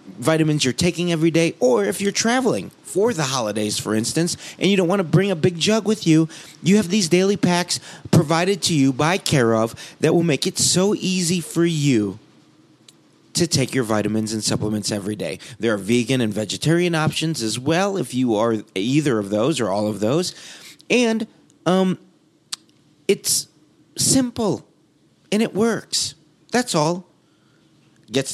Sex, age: male, 30-49